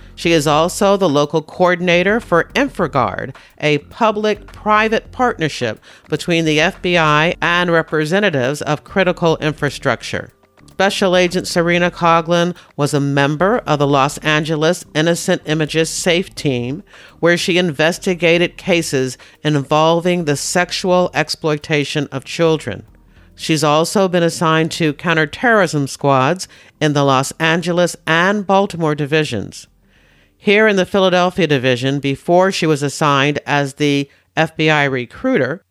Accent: American